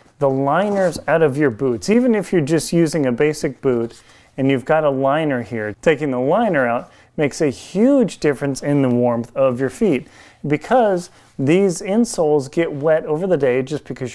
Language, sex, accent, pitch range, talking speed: English, male, American, 135-175 Hz, 185 wpm